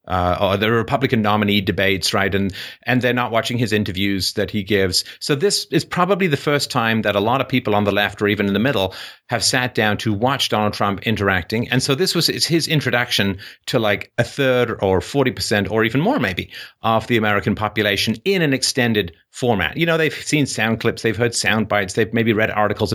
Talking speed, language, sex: 220 wpm, English, male